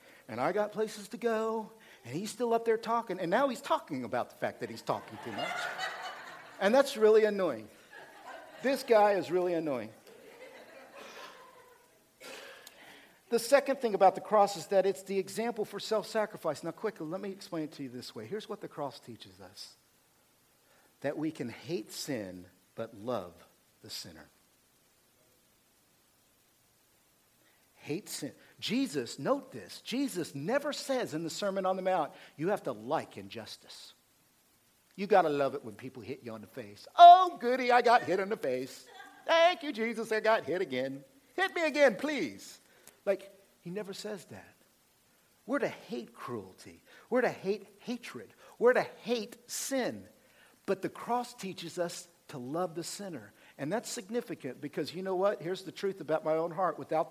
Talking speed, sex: 170 wpm, male